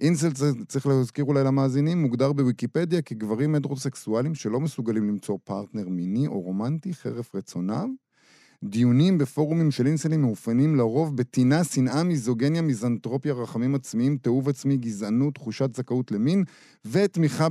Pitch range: 115-150 Hz